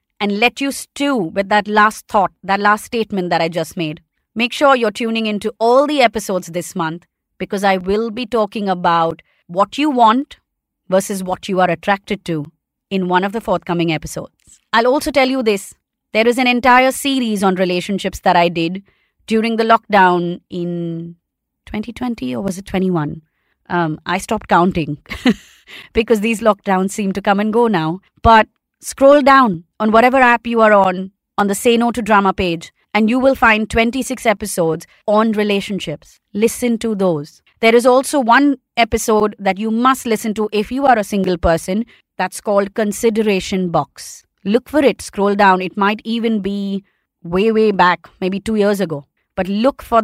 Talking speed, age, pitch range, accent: 180 wpm, 30-49, 185-230 Hz, Indian